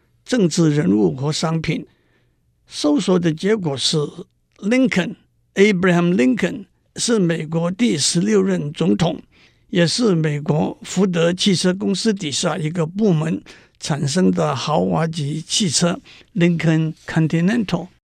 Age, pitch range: 60-79, 160-215 Hz